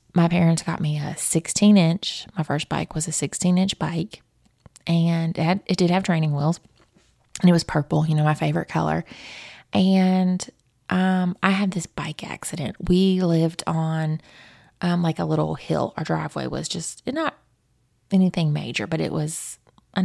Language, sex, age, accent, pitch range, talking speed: English, female, 20-39, American, 155-190 Hz, 170 wpm